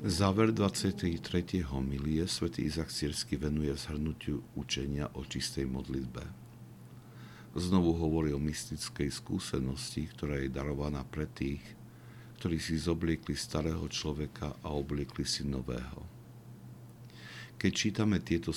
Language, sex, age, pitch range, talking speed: Slovak, male, 60-79, 70-90 Hz, 110 wpm